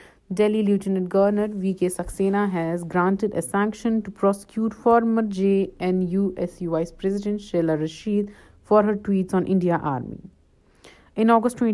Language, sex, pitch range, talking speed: Urdu, female, 170-205 Hz, 130 wpm